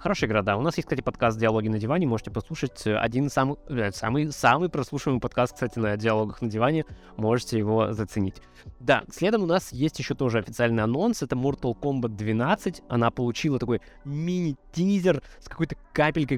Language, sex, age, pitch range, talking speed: Russian, male, 20-39, 115-150 Hz, 170 wpm